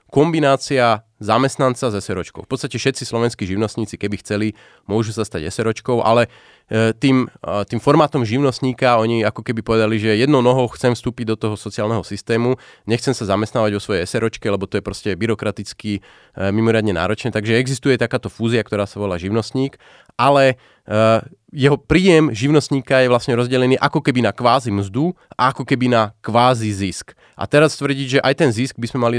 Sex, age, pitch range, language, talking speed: male, 30-49, 110-145 Hz, Slovak, 170 wpm